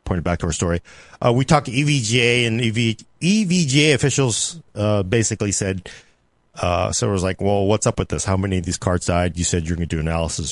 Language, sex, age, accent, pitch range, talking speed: English, male, 40-59, American, 95-130 Hz, 220 wpm